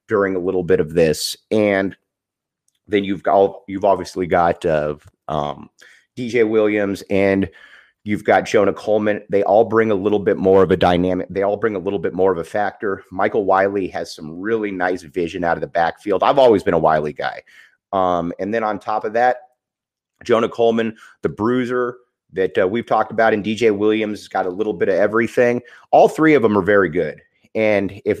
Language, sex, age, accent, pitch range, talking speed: English, male, 30-49, American, 95-120 Hz, 200 wpm